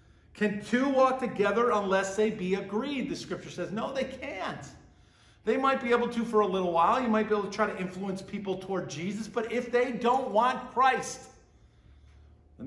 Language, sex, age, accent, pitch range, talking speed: English, male, 50-69, American, 190-240 Hz, 195 wpm